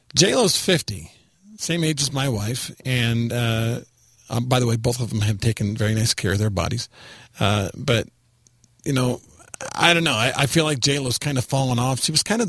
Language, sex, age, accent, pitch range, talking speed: English, male, 40-59, American, 115-155 Hz, 205 wpm